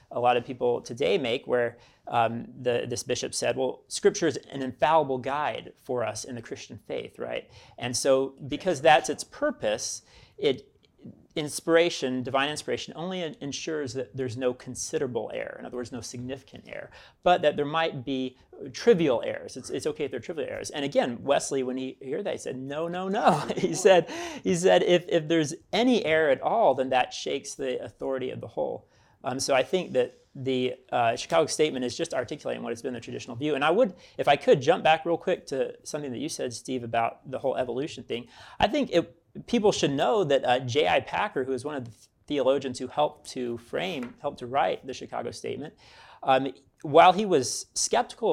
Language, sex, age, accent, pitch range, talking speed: English, male, 30-49, American, 125-165 Hz, 200 wpm